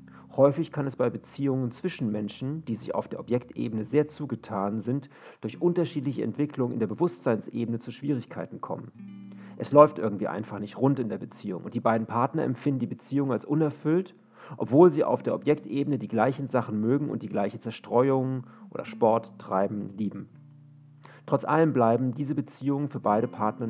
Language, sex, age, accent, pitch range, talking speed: German, male, 40-59, German, 115-145 Hz, 170 wpm